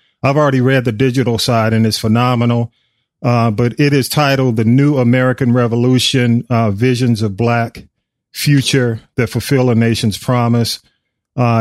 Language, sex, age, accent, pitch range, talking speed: English, male, 40-59, American, 120-145 Hz, 150 wpm